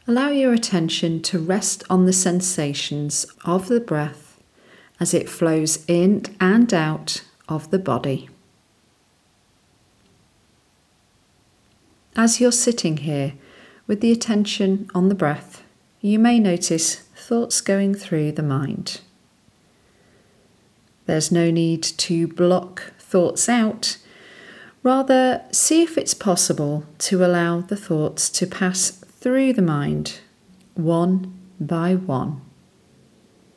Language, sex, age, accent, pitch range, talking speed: English, female, 40-59, British, 155-215 Hz, 105 wpm